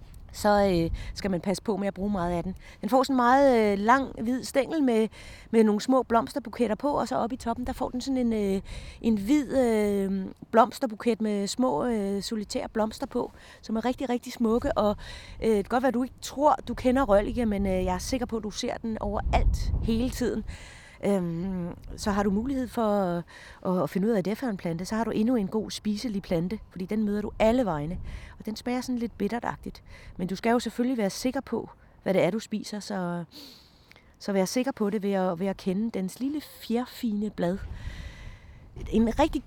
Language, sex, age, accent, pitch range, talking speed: Danish, female, 30-49, native, 190-245 Hz, 220 wpm